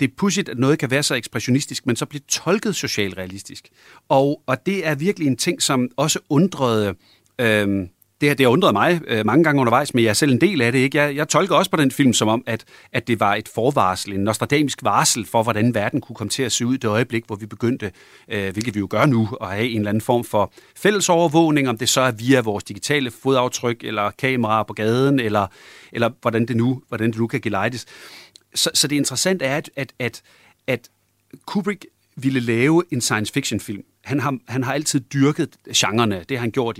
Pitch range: 110-145 Hz